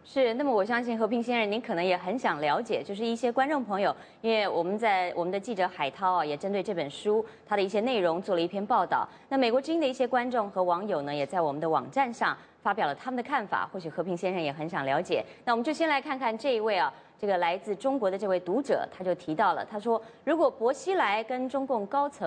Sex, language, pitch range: female, English, 180-265 Hz